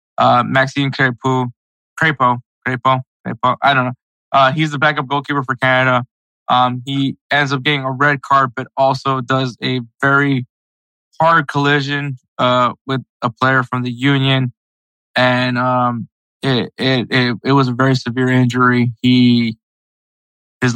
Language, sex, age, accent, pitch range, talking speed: English, male, 20-39, American, 120-135 Hz, 145 wpm